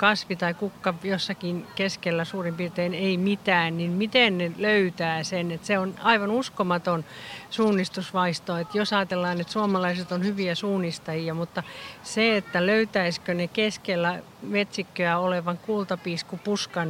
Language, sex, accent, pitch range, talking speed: Finnish, female, native, 175-205 Hz, 130 wpm